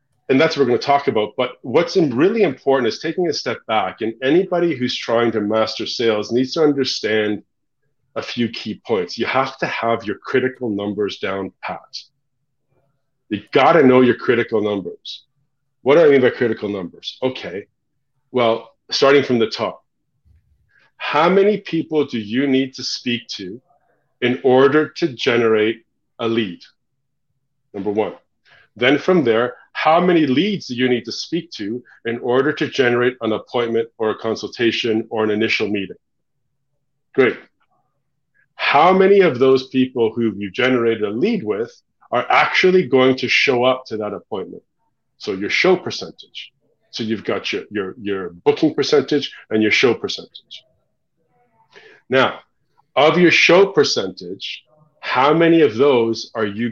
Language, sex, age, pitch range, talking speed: English, male, 40-59, 115-145 Hz, 160 wpm